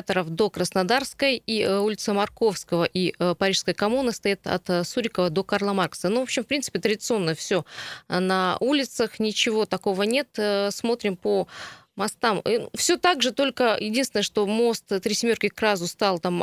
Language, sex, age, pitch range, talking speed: Russian, female, 20-39, 185-230 Hz, 155 wpm